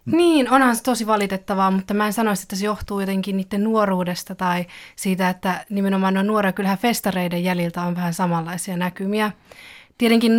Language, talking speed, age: Finnish, 165 wpm, 20-39